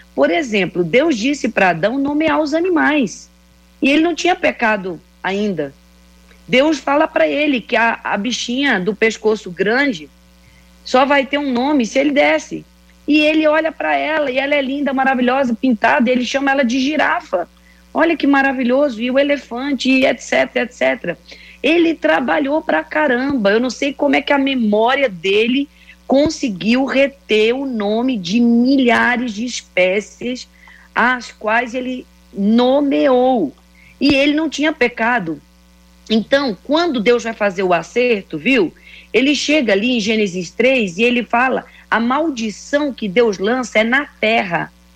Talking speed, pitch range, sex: 150 wpm, 205-280 Hz, female